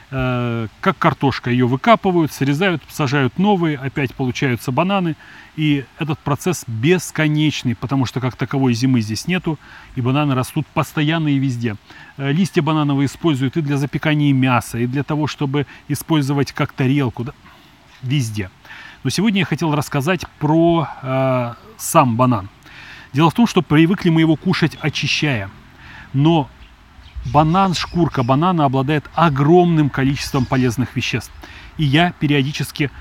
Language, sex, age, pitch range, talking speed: Russian, male, 30-49, 130-155 Hz, 130 wpm